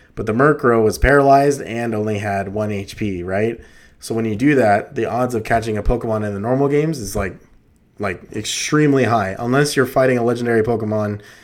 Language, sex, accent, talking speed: English, male, American, 195 wpm